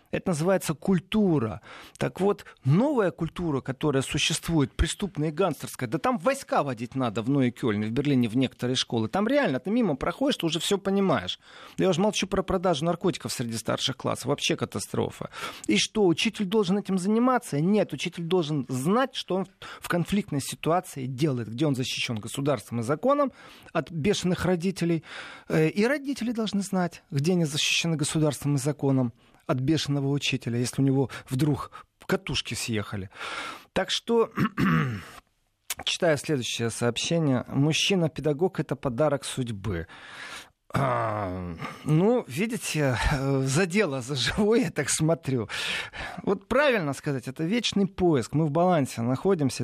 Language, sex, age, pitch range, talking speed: Russian, male, 40-59, 130-185 Hz, 145 wpm